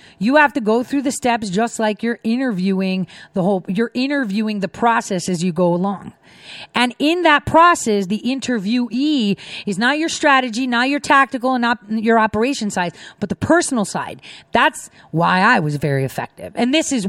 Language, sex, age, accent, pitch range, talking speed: English, female, 30-49, American, 185-245 Hz, 185 wpm